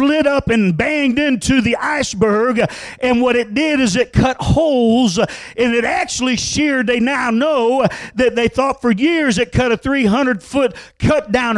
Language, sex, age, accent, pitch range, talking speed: English, male, 50-69, American, 225-270 Hz, 175 wpm